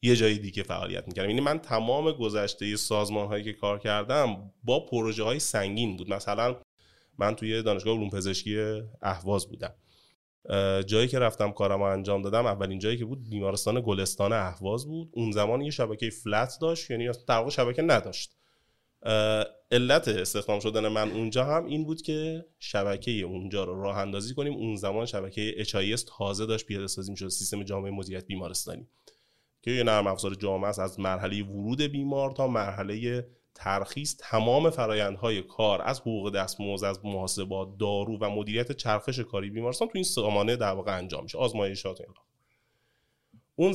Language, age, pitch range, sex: Persian, 20-39, 100-120 Hz, male